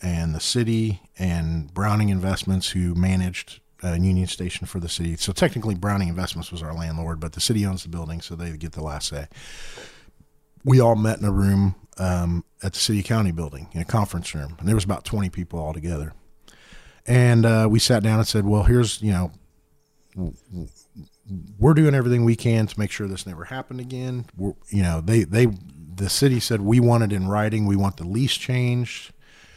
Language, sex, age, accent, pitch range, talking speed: English, male, 40-59, American, 90-115 Hz, 195 wpm